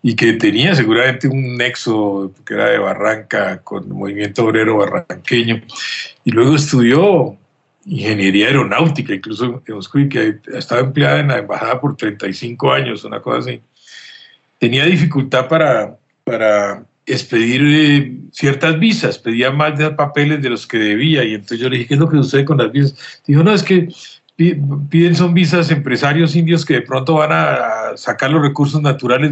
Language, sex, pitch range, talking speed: Spanish, male, 120-150 Hz, 170 wpm